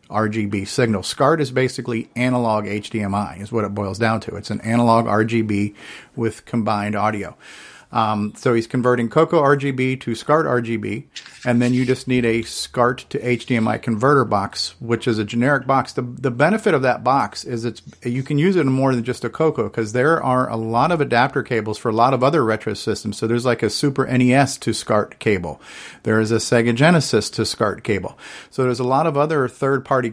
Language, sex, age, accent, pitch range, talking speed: English, male, 50-69, American, 110-130 Hz, 205 wpm